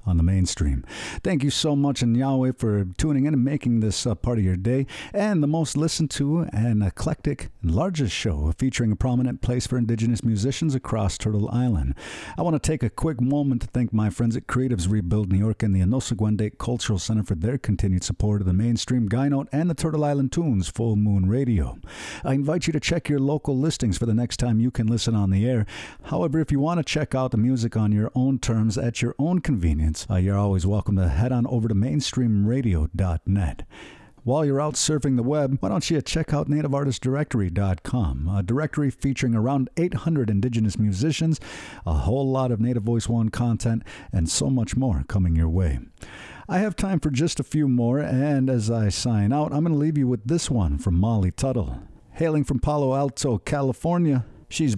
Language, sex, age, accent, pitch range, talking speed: English, male, 50-69, American, 105-145 Hz, 205 wpm